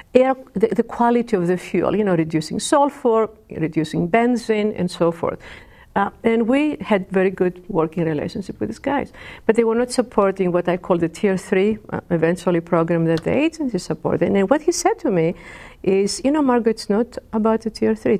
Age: 50-69